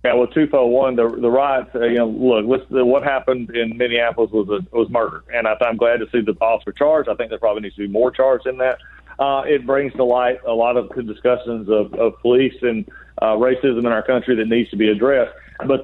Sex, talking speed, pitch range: male, 245 wpm, 115-130 Hz